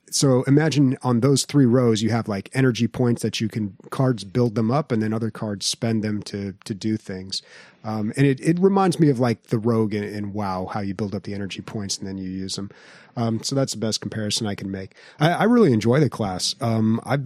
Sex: male